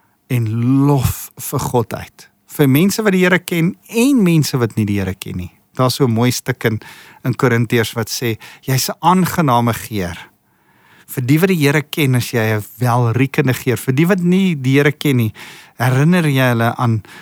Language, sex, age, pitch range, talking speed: English, male, 50-69, 115-150 Hz, 195 wpm